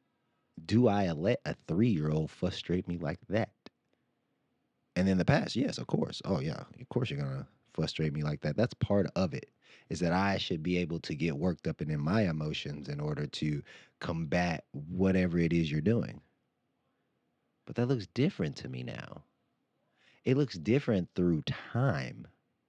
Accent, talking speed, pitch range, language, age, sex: American, 175 wpm, 80-100 Hz, English, 30-49, male